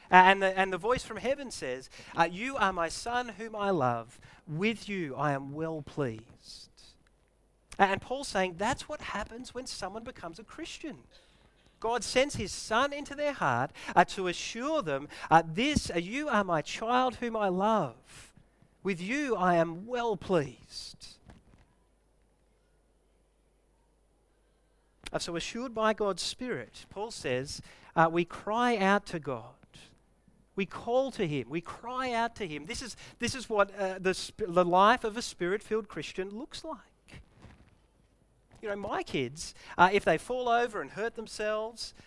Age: 40-59